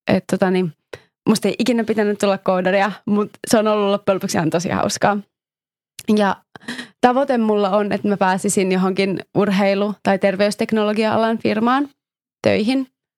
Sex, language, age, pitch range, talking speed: female, Finnish, 20-39, 195-225 Hz, 130 wpm